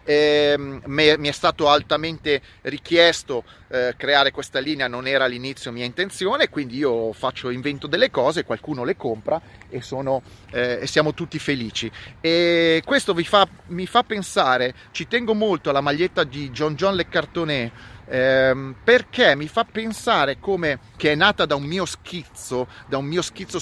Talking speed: 170 wpm